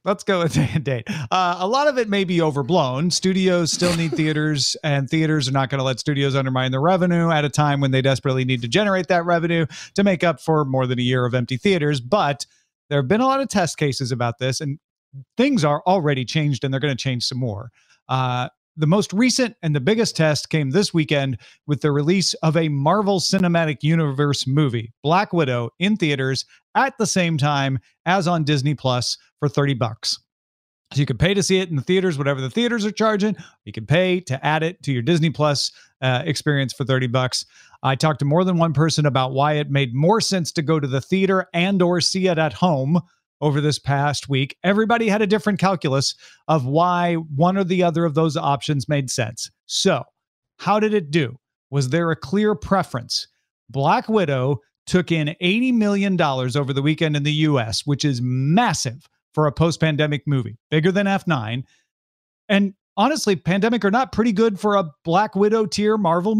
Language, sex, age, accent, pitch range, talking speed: English, male, 40-59, American, 135-185 Hz, 200 wpm